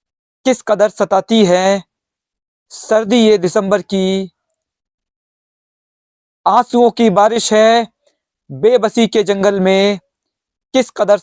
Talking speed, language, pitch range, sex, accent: 95 wpm, Hindi, 195-230 Hz, male, native